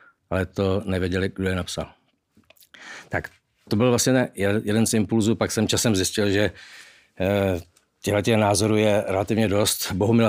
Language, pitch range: Czech, 95-105 Hz